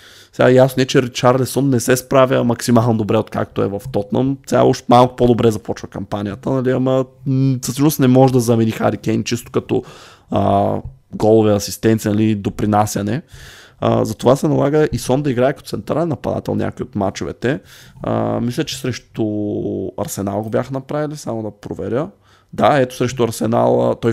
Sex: male